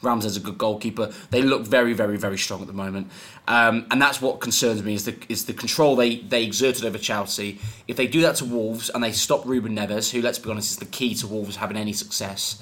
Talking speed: 250 wpm